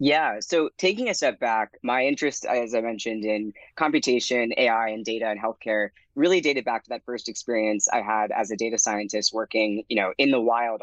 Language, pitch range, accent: English, 115-140 Hz, American